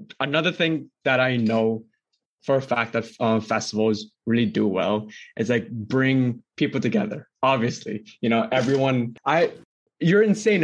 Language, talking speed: English, 145 wpm